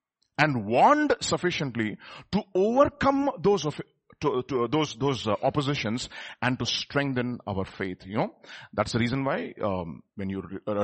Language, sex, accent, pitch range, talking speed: English, male, Indian, 130-180 Hz, 160 wpm